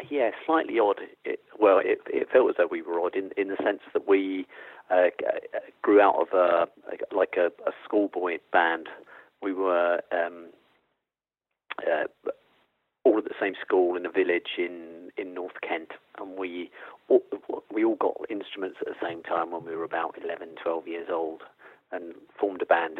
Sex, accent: male, British